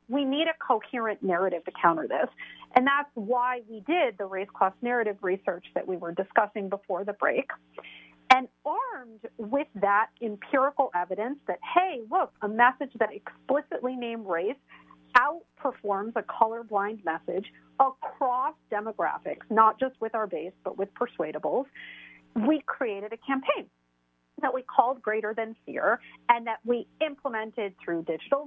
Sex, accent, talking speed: female, American, 150 wpm